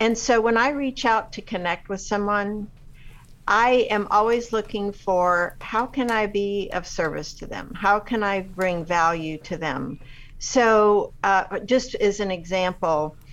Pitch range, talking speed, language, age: 175-220 Hz, 160 wpm, English, 60-79